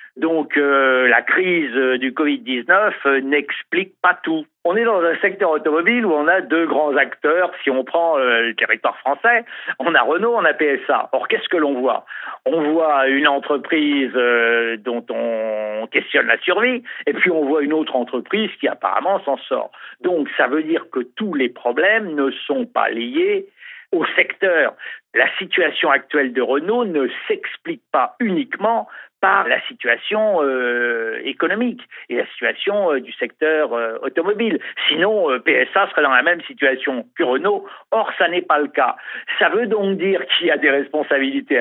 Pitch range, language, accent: 130-215 Hz, French, French